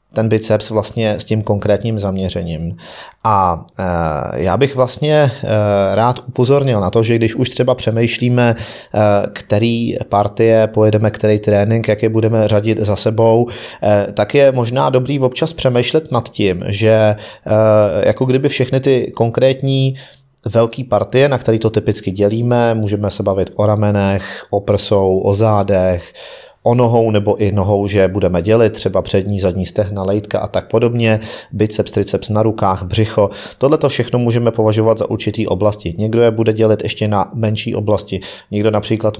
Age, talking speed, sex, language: 30-49, 150 wpm, male, Czech